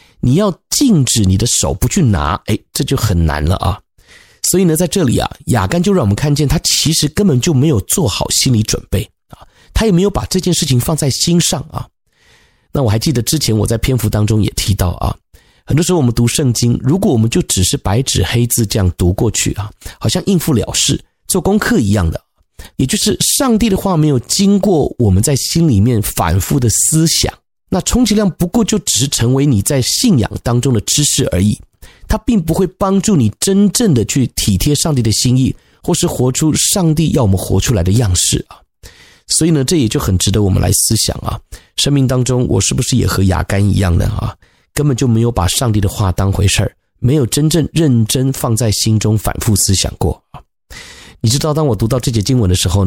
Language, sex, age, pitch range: Chinese, male, 30-49, 105-155 Hz